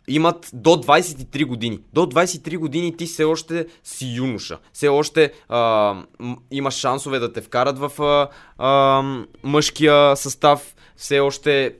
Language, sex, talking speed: Bulgarian, male, 135 wpm